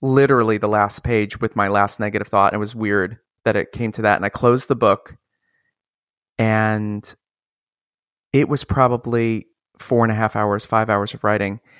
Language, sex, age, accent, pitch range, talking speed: English, male, 30-49, American, 110-130 Hz, 185 wpm